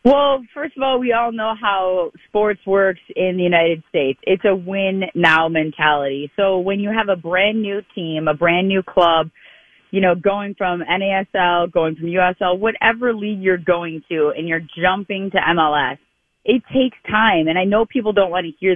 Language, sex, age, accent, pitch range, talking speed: English, female, 30-49, American, 170-205 Hz, 190 wpm